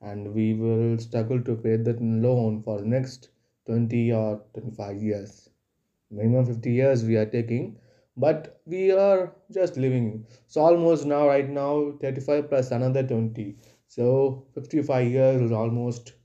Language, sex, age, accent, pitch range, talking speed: Tamil, male, 20-39, native, 115-145 Hz, 150 wpm